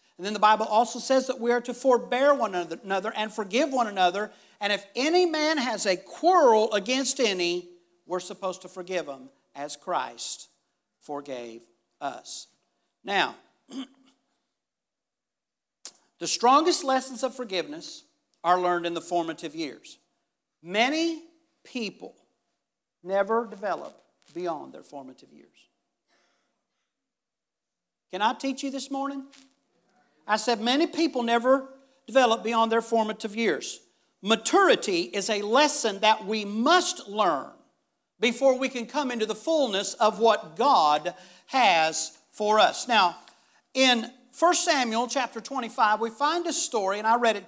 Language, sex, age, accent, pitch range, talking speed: English, male, 50-69, American, 185-265 Hz, 135 wpm